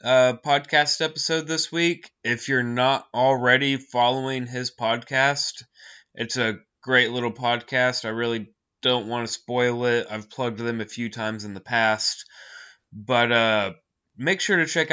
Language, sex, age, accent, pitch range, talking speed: English, male, 20-39, American, 110-130 Hz, 155 wpm